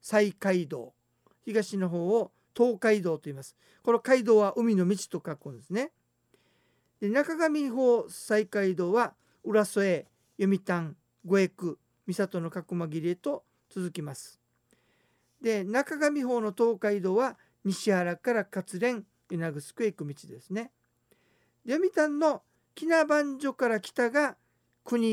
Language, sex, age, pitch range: Japanese, male, 50-69, 170-240 Hz